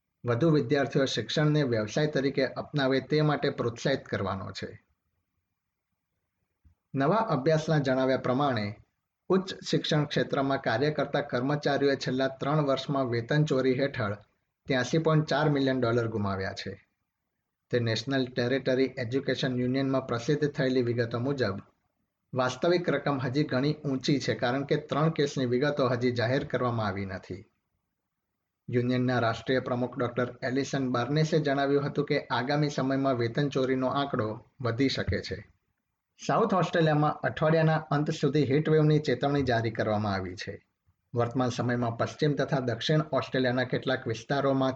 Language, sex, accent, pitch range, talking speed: Gujarati, male, native, 115-145 Hz, 120 wpm